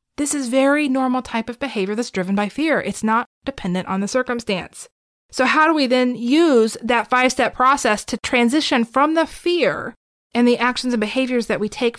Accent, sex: American, female